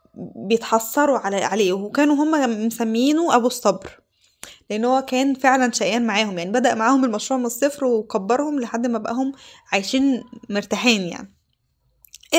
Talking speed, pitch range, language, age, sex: 125 wpm, 225-275 Hz, Arabic, 10-29, female